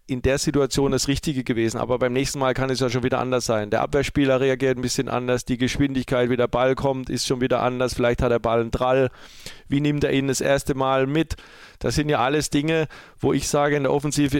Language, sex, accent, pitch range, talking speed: German, male, German, 125-150 Hz, 240 wpm